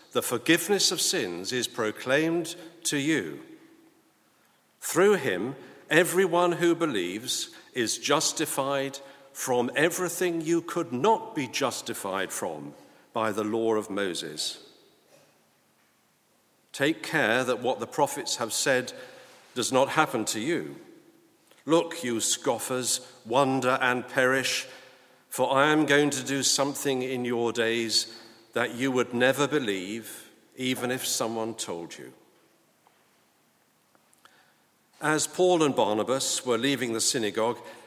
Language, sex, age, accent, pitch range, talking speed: English, male, 50-69, British, 120-155 Hz, 120 wpm